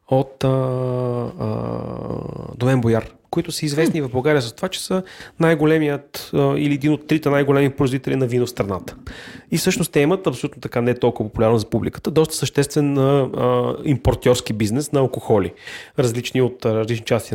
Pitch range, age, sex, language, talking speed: 120-150 Hz, 30-49, male, Bulgarian, 165 wpm